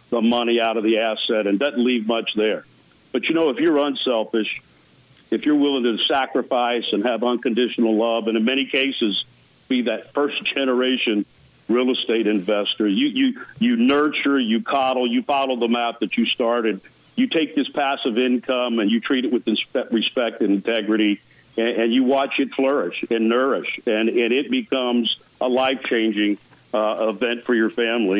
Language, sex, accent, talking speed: English, male, American, 170 wpm